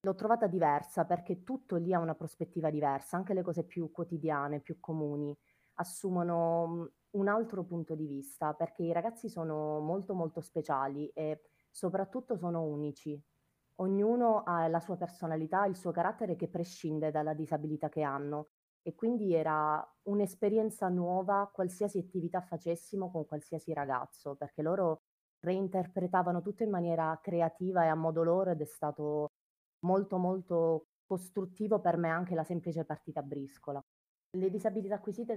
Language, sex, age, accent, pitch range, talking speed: Italian, female, 30-49, native, 150-180 Hz, 145 wpm